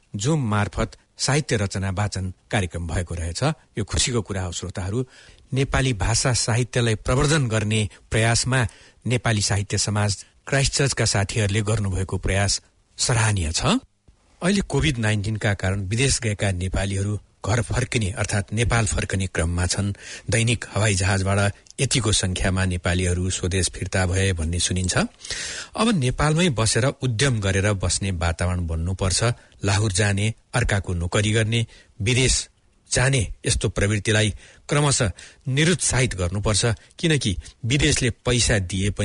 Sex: male